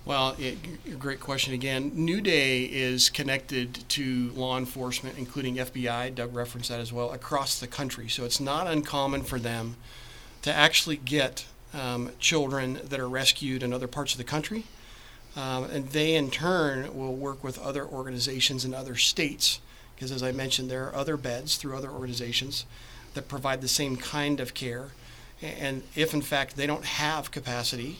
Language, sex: English, male